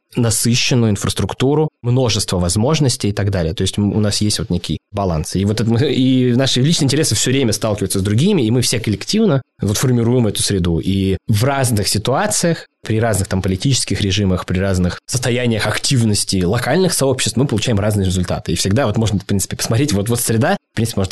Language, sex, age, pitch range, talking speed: Russian, male, 20-39, 95-125 Hz, 190 wpm